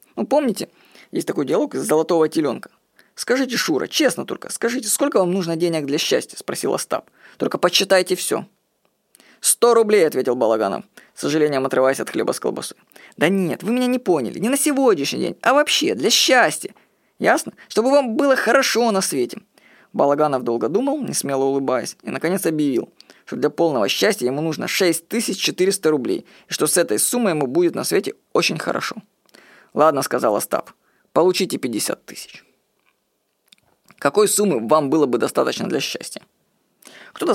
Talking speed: 160 wpm